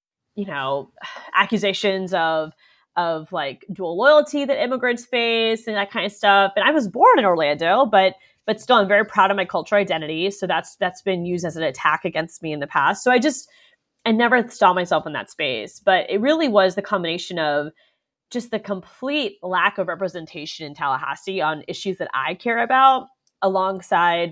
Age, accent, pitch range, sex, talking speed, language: 20-39, American, 170-225 Hz, female, 190 wpm, English